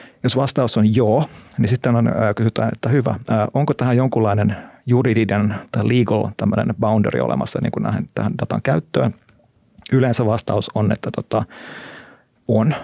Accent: native